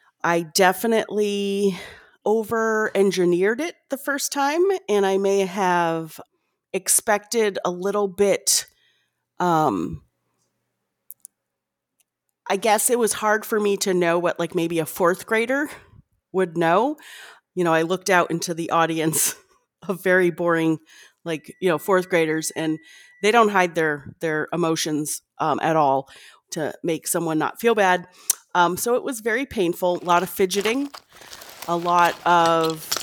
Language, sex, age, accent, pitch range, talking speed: English, female, 30-49, American, 160-200 Hz, 145 wpm